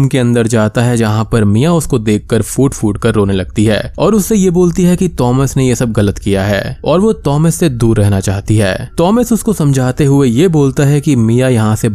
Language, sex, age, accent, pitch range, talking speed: Hindi, male, 20-39, native, 105-145 Hz, 185 wpm